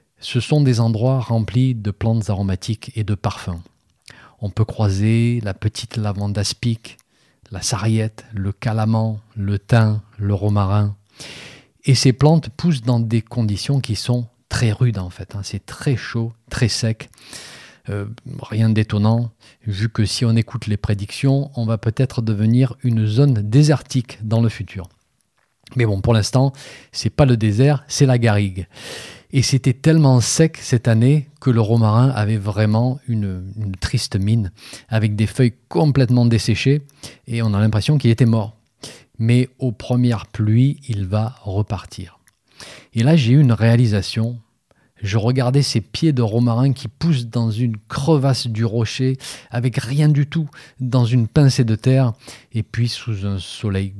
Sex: male